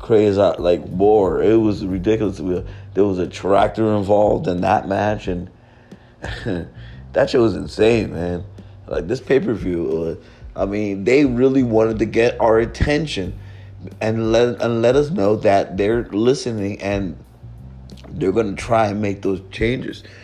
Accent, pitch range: American, 95-120 Hz